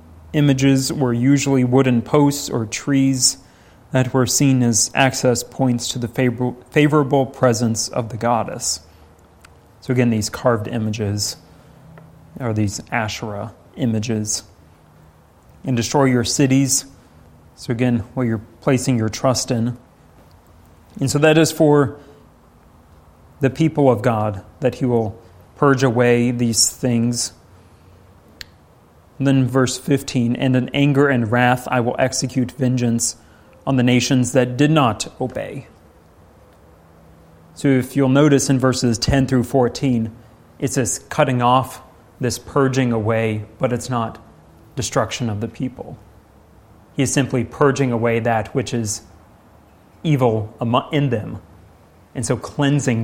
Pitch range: 105-130 Hz